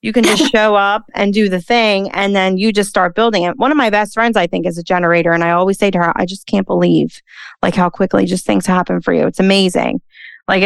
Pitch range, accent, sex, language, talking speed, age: 175-205 Hz, American, female, English, 265 wpm, 30-49